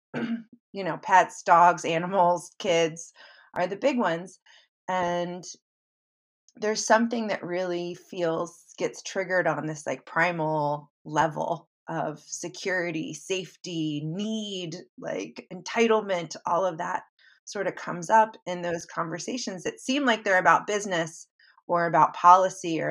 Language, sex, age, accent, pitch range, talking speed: English, female, 30-49, American, 165-200 Hz, 130 wpm